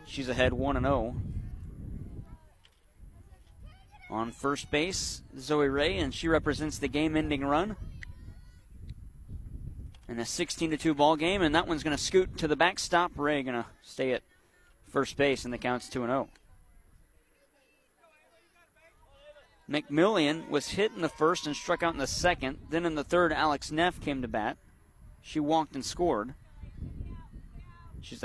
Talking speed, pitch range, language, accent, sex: 140 wpm, 115-165 Hz, English, American, male